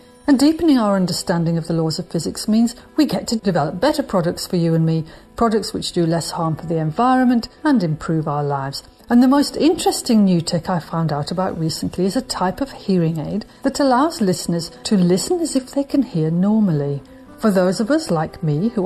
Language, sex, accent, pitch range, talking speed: English, female, British, 170-235 Hz, 215 wpm